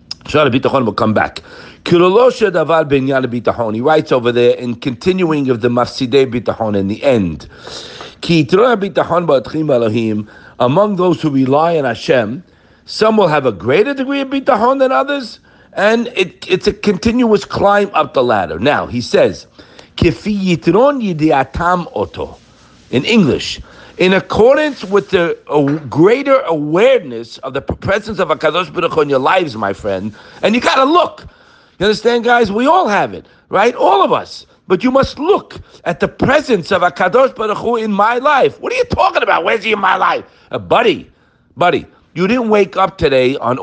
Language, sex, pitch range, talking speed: English, male, 140-220 Hz, 155 wpm